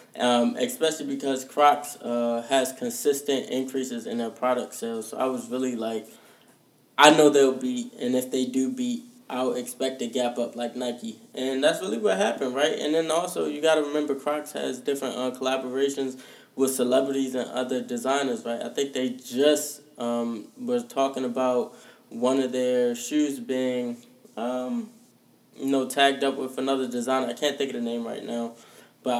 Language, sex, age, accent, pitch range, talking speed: English, male, 20-39, American, 125-145 Hz, 180 wpm